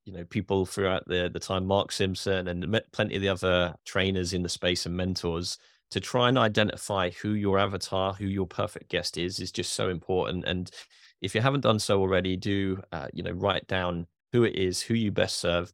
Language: English